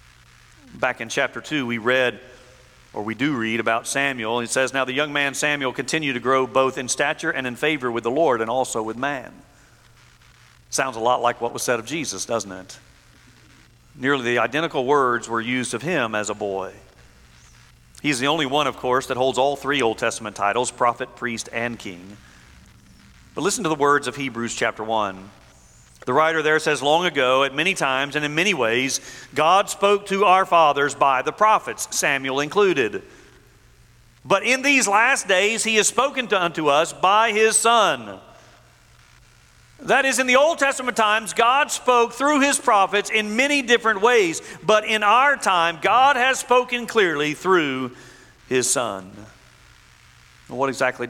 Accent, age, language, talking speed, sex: American, 50-69, English, 175 wpm, male